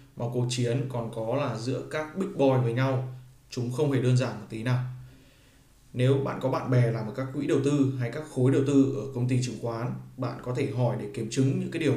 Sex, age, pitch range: male, 20-39, 125-140 Hz